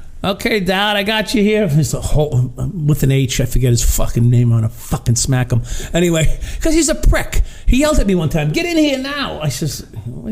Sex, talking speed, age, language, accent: male, 240 wpm, 50-69, English, American